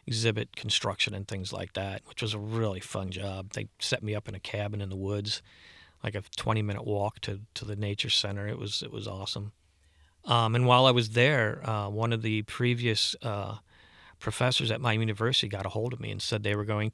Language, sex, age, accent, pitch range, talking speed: English, male, 40-59, American, 100-115 Hz, 220 wpm